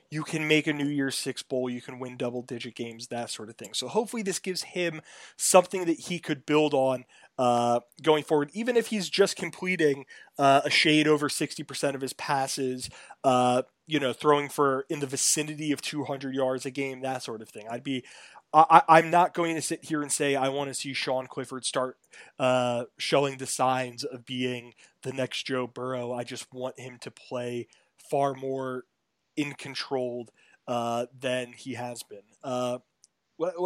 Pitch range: 130-155 Hz